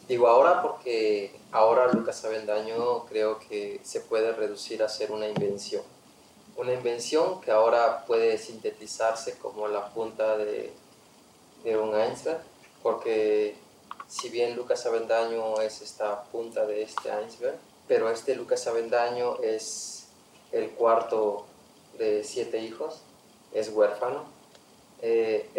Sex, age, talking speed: male, 30-49, 120 wpm